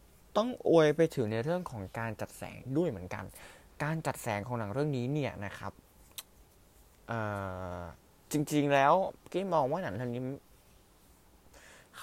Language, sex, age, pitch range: Thai, male, 20-39, 100-145 Hz